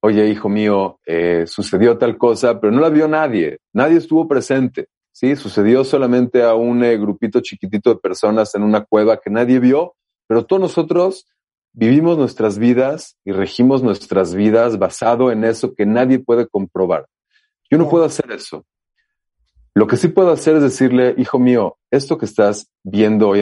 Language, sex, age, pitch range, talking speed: Spanish, male, 40-59, 105-135 Hz, 170 wpm